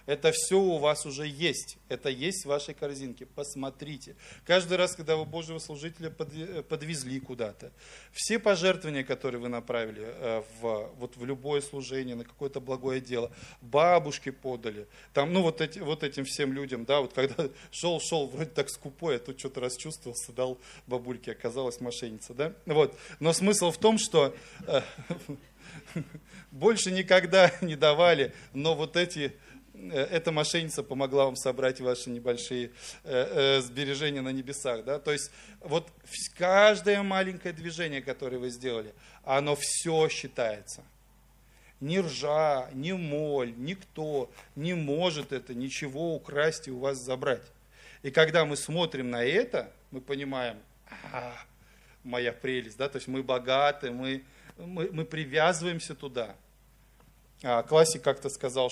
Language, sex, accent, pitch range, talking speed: Russian, male, native, 130-160 Hz, 135 wpm